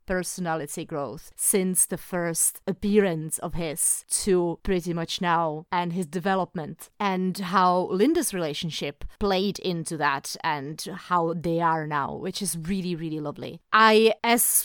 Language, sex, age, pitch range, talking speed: English, female, 30-49, 170-235 Hz, 140 wpm